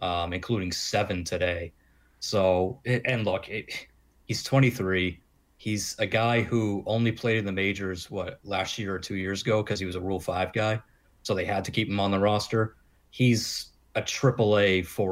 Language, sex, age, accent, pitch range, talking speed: English, male, 30-49, American, 95-115 Hz, 180 wpm